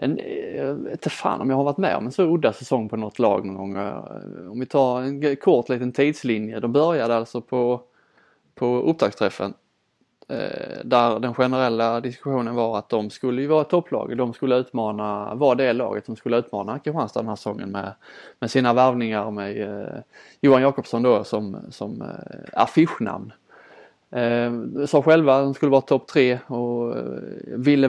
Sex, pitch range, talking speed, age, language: male, 115-140 Hz, 170 wpm, 20-39, Swedish